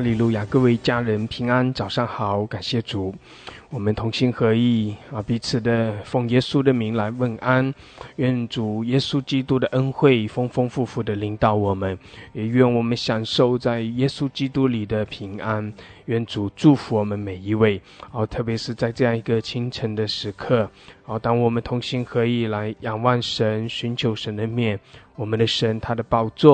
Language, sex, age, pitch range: English, male, 20-39, 110-125 Hz